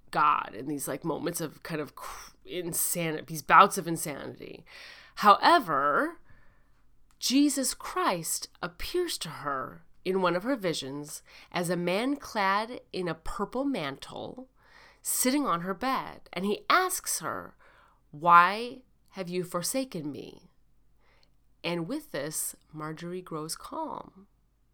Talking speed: 125 wpm